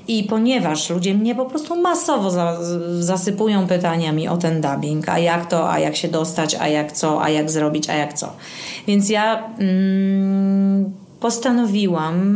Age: 30-49